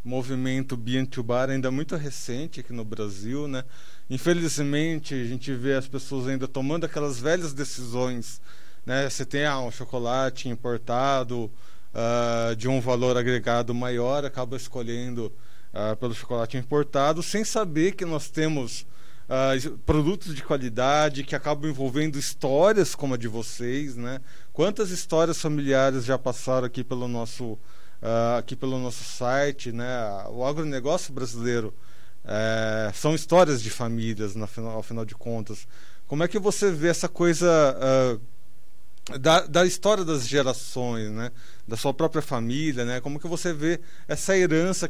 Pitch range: 120-150 Hz